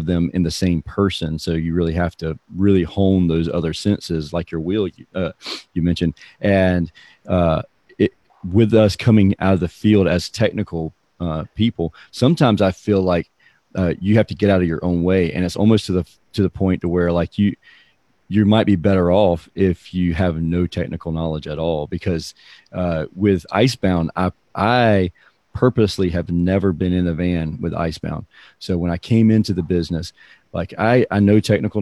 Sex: male